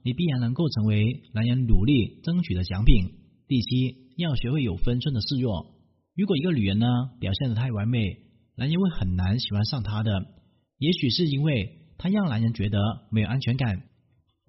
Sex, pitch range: male, 110-155 Hz